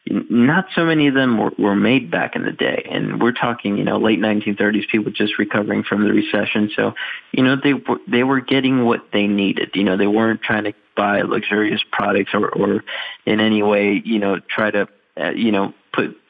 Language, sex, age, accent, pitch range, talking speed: English, male, 20-39, American, 100-115 Hz, 215 wpm